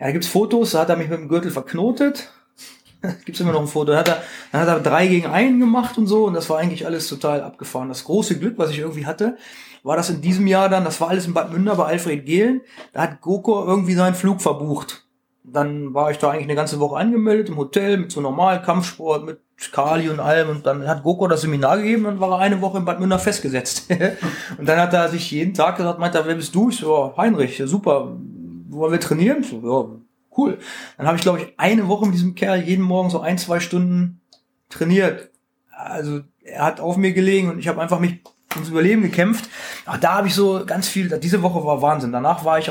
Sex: male